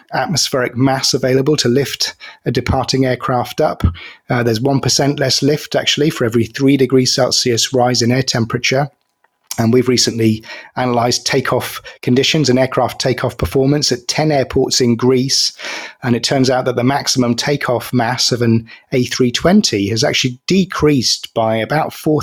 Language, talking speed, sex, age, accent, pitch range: English, 155 wpm, male, 30-49, British, 115-140 Hz